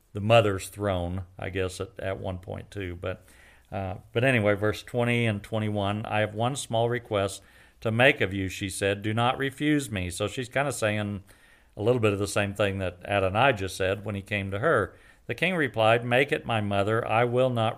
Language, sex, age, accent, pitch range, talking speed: English, male, 50-69, American, 100-120 Hz, 215 wpm